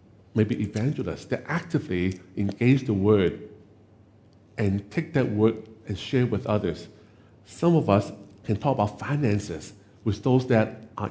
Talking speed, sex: 145 wpm, male